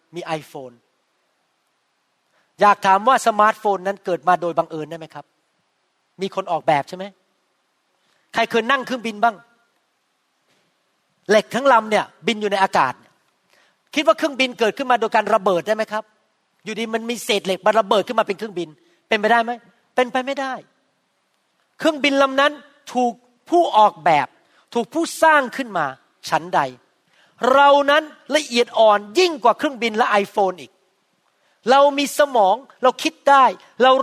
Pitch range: 180-255 Hz